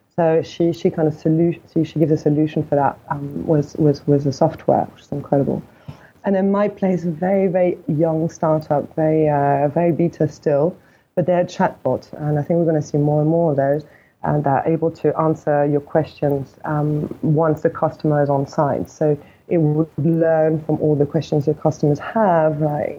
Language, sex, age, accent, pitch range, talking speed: English, female, 20-39, British, 150-165 Hz, 205 wpm